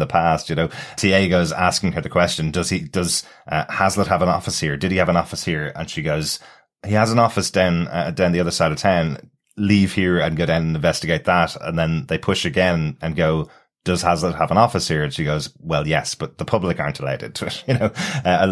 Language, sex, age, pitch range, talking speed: English, male, 30-49, 80-95 Hz, 245 wpm